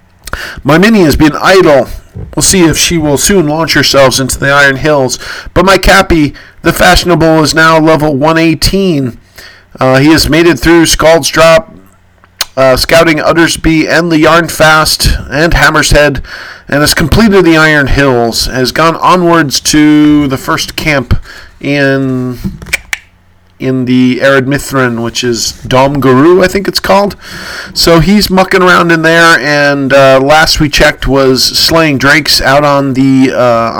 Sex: male